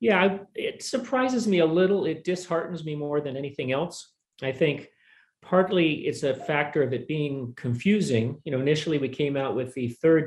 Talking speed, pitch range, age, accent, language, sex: 185 wpm, 125-160 Hz, 40-59, American, English, male